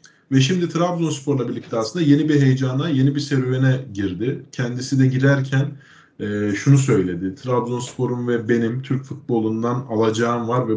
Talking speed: 145 wpm